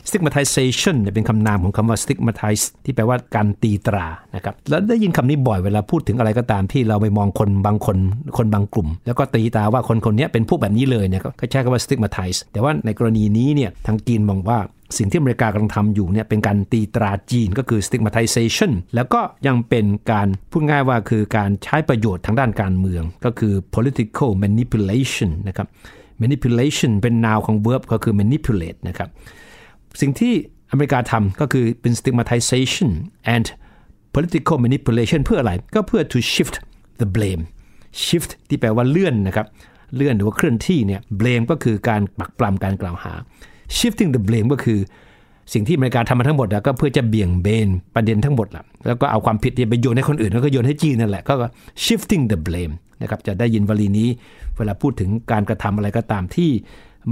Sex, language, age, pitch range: male, Thai, 60-79, 105-130 Hz